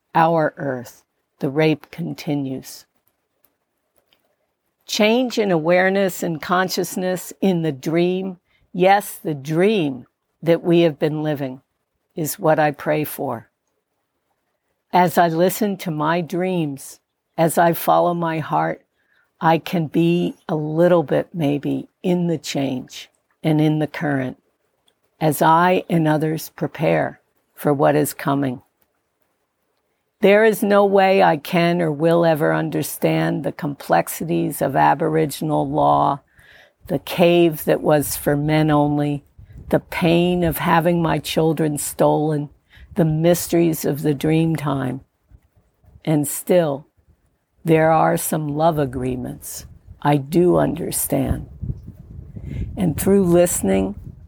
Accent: American